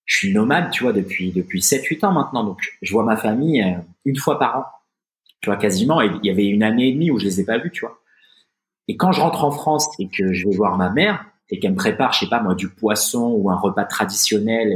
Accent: French